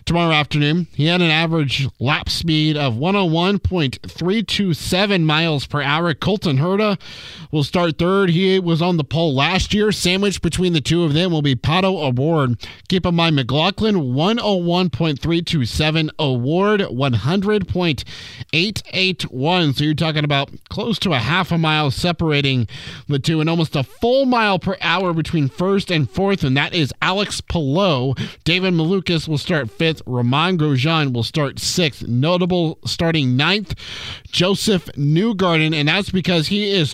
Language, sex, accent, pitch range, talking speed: English, male, American, 135-175 Hz, 150 wpm